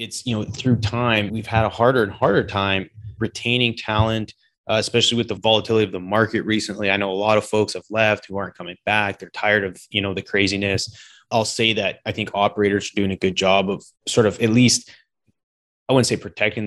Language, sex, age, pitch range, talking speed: English, male, 20-39, 100-115 Hz, 225 wpm